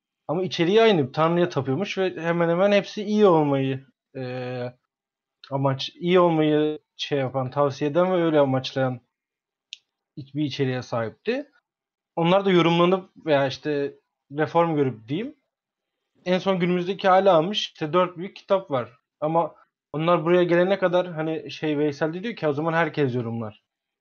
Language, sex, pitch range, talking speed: Turkish, male, 140-185 Hz, 140 wpm